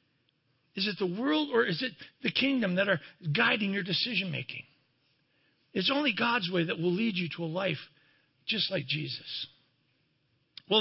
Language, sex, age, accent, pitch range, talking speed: English, male, 50-69, American, 150-235 Hz, 160 wpm